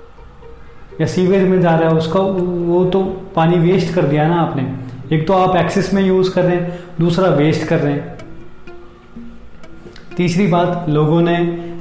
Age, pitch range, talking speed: 20-39, 145-175 Hz, 170 wpm